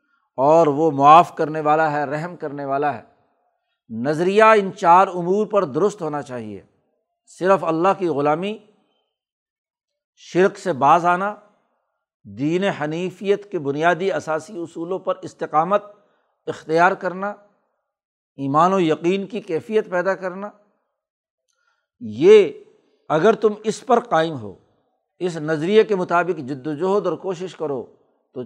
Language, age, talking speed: Urdu, 60-79, 125 wpm